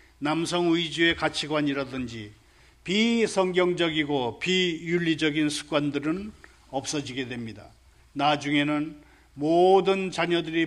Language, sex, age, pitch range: Korean, male, 40-59, 150-200 Hz